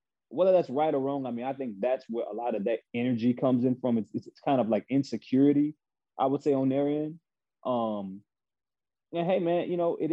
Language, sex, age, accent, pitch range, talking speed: English, male, 20-39, American, 105-130 Hz, 230 wpm